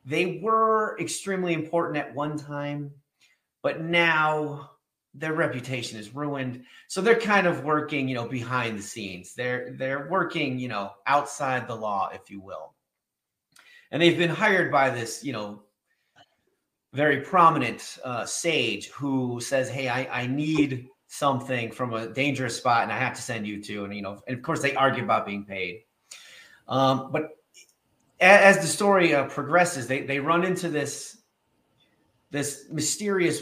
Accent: American